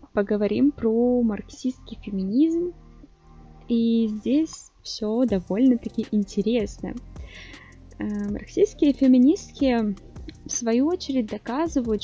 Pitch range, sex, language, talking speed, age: 200-260 Hz, female, Russian, 75 wpm, 20-39